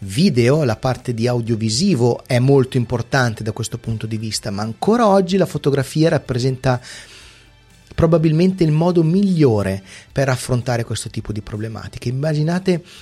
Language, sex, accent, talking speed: Italian, male, native, 140 wpm